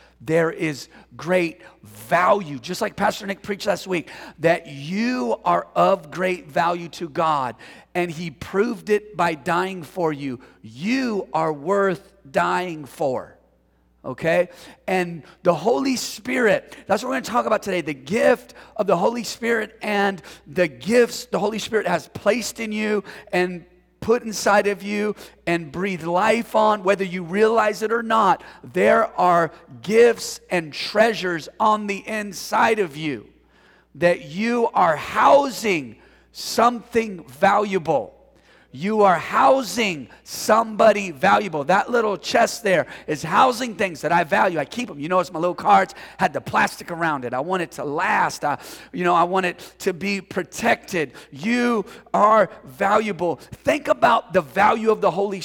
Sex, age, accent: male, 40-59, American